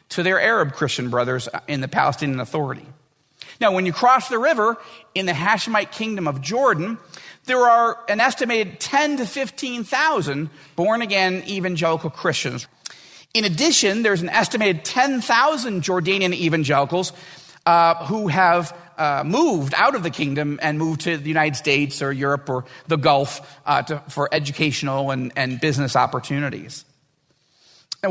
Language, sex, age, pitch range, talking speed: English, male, 40-59, 150-210 Hz, 145 wpm